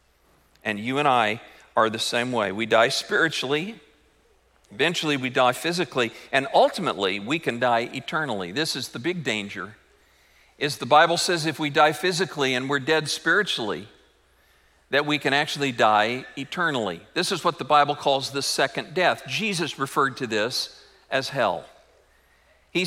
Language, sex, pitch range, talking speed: English, male, 125-175 Hz, 155 wpm